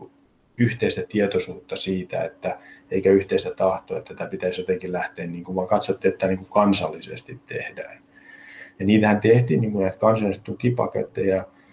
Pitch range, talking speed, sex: 95-110 Hz, 135 wpm, male